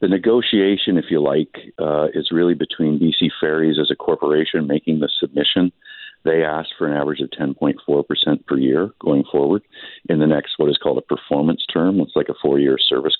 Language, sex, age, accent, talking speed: English, male, 50-69, American, 190 wpm